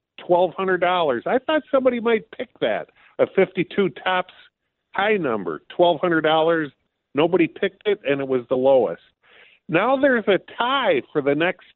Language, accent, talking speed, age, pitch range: English, American, 145 wpm, 50-69, 165-210 Hz